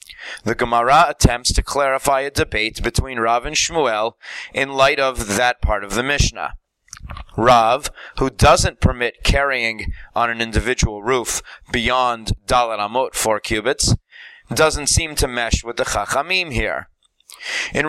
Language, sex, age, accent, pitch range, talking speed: English, male, 30-49, American, 110-150 Hz, 140 wpm